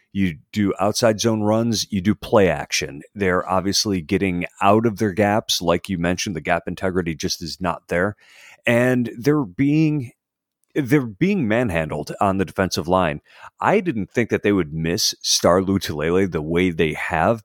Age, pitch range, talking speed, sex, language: 40-59, 90-120 Hz, 170 wpm, male, English